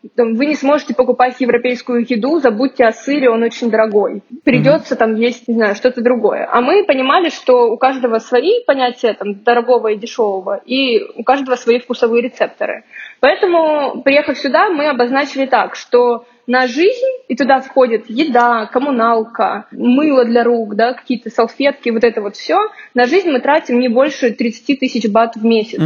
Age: 20-39